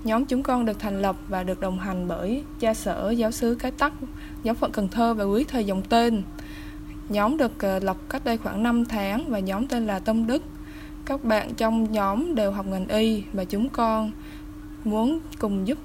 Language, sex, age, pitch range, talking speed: Vietnamese, female, 20-39, 195-245 Hz, 205 wpm